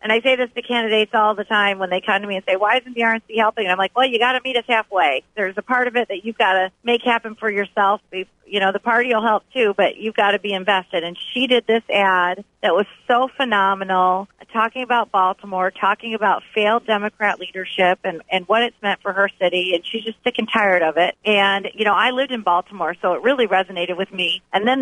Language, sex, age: English, female, 40-59